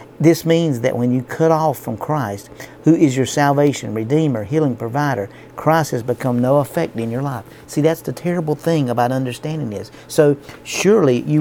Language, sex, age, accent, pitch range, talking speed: English, male, 50-69, American, 120-150 Hz, 185 wpm